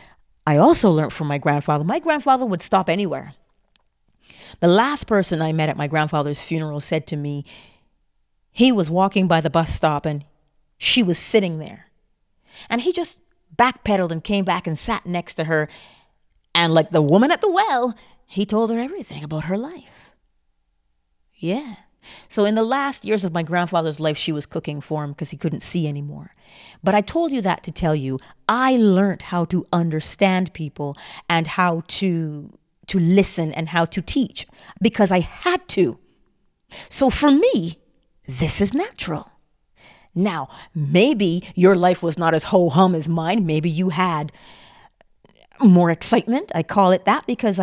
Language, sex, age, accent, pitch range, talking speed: English, female, 40-59, American, 160-210 Hz, 170 wpm